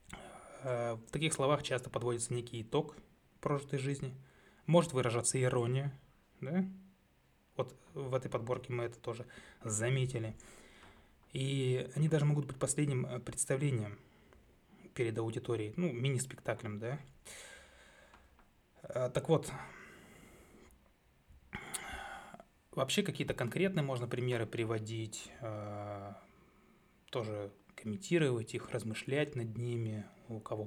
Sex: male